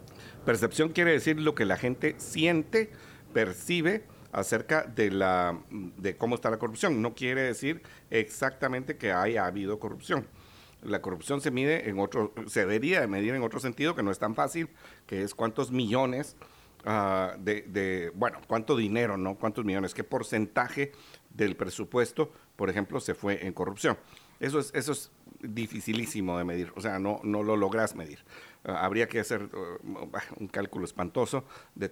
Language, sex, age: Spanish, male, 50-69